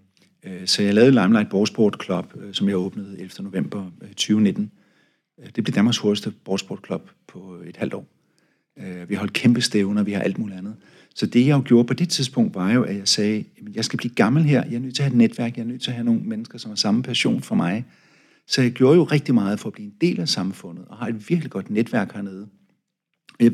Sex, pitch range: male, 105-155 Hz